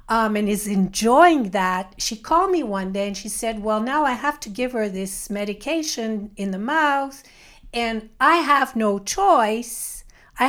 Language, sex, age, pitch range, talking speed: English, female, 50-69, 210-285 Hz, 175 wpm